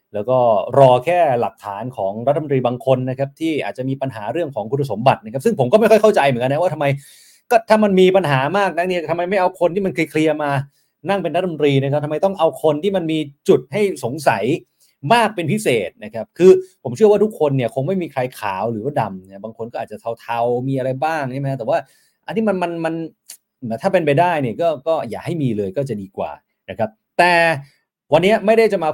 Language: Thai